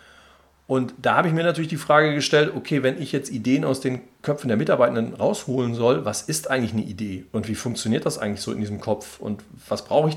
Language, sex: German, male